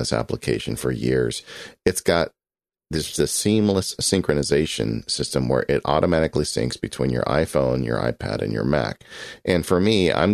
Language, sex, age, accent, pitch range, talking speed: English, male, 40-59, American, 70-90 Hz, 155 wpm